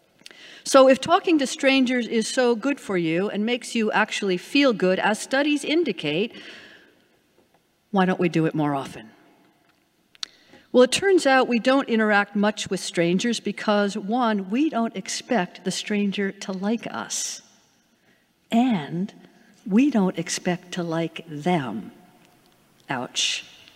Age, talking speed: 50-69, 135 wpm